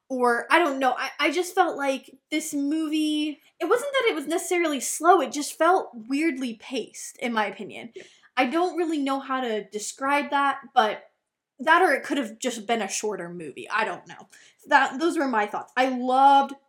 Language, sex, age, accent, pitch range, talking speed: English, female, 10-29, American, 225-285 Hz, 200 wpm